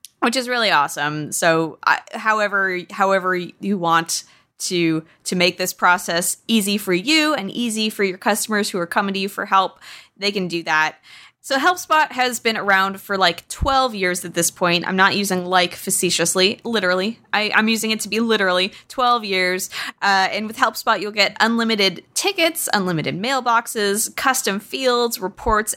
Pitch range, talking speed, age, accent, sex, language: 180-230 Hz, 170 wpm, 20-39, American, female, English